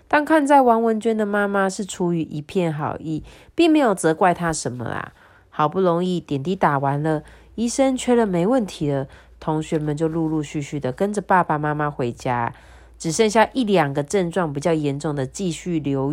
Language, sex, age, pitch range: Chinese, female, 30-49, 150-215 Hz